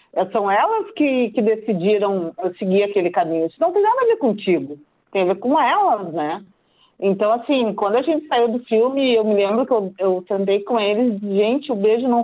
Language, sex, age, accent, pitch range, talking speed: English, female, 40-59, Brazilian, 190-250 Hz, 200 wpm